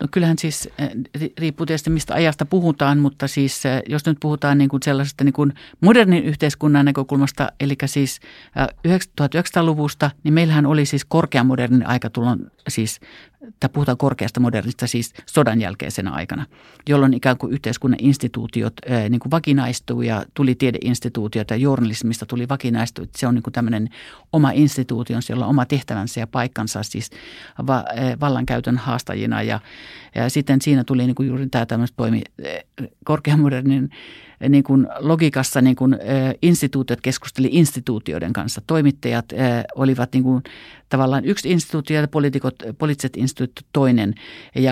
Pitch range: 120-145 Hz